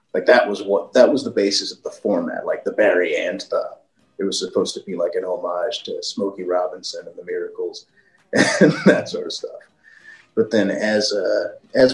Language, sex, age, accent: English, male, 30-49, American